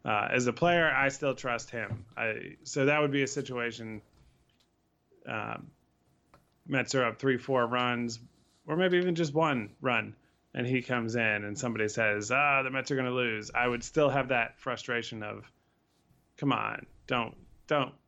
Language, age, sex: English, 20-39, male